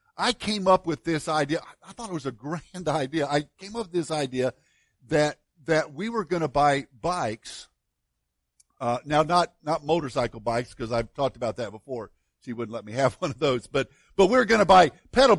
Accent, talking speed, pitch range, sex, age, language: American, 215 wpm, 135-195 Hz, male, 50-69, English